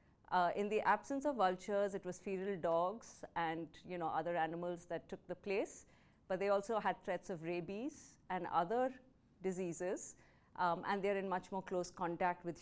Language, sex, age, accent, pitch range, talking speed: English, female, 50-69, Indian, 170-200 Hz, 180 wpm